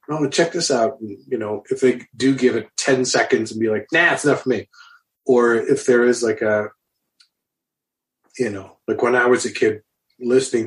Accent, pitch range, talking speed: American, 100-130 Hz, 200 wpm